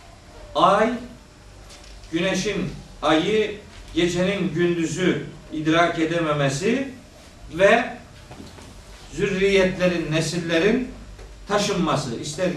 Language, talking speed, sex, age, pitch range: Turkish, 55 wpm, male, 50-69, 150-205 Hz